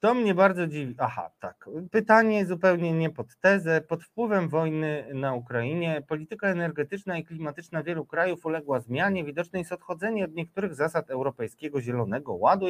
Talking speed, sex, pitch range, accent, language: 155 wpm, male, 130-160 Hz, native, Polish